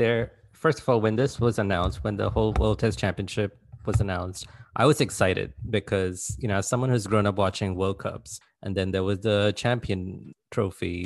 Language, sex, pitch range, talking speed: English, male, 95-120 Hz, 200 wpm